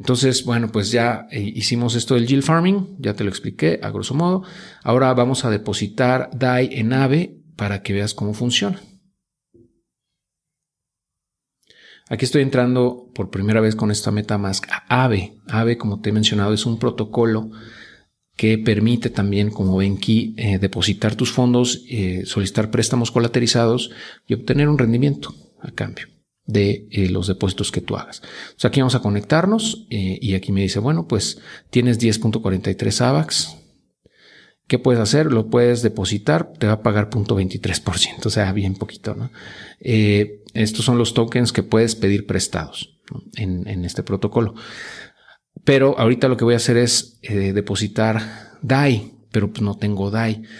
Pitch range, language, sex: 105-125 Hz, Spanish, male